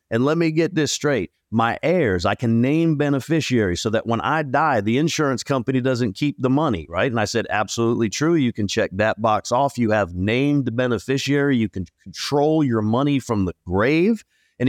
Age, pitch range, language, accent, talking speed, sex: 40-59, 110-140 Hz, English, American, 205 wpm, male